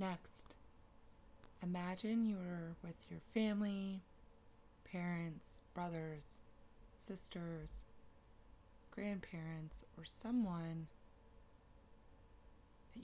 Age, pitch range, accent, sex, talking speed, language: 30-49, 110-170 Hz, American, female, 60 wpm, English